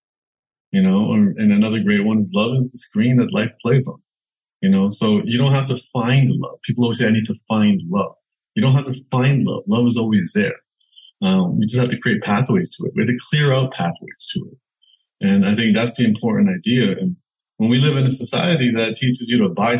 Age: 30-49